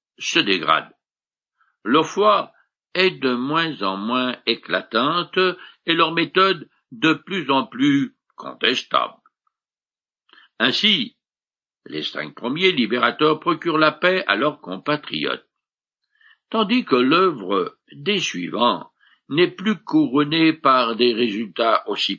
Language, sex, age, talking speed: French, male, 60-79, 110 wpm